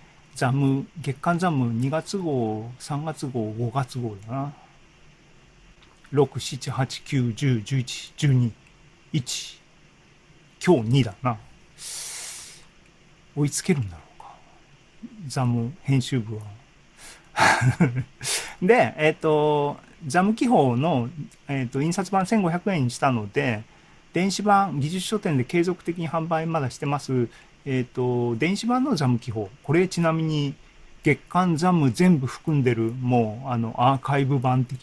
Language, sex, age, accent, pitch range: Japanese, male, 40-59, native, 120-160 Hz